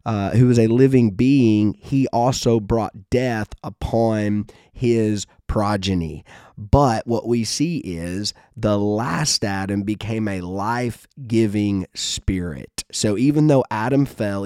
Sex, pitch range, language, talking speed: male, 95-125 Hz, English, 125 wpm